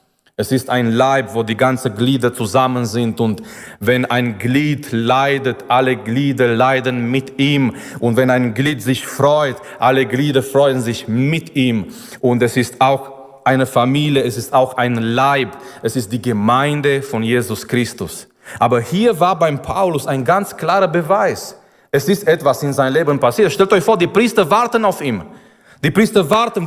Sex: male